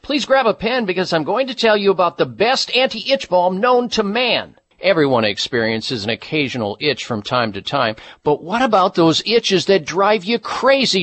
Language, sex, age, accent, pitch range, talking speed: English, male, 50-69, American, 175-230 Hz, 195 wpm